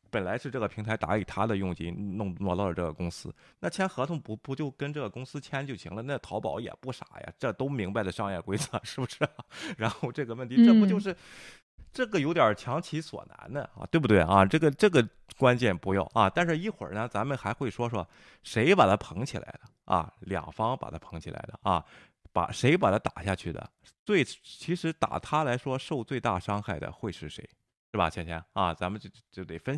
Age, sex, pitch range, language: 20-39, male, 95-140 Hz, Chinese